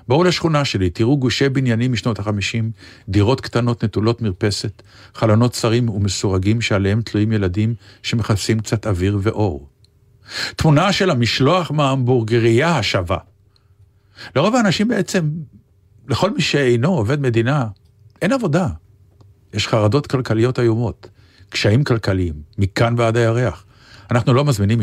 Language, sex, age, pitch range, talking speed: Hebrew, male, 50-69, 100-140 Hz, 120 wpm